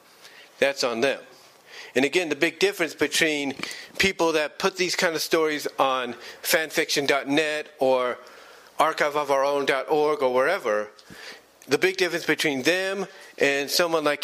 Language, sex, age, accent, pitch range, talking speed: English, male, 40-59, American, 140-195 Hz, 125 wpm